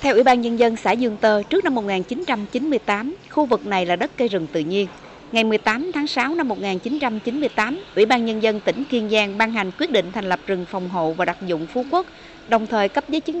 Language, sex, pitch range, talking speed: Vietnamese, female, 195-255 Hz, 235 wpm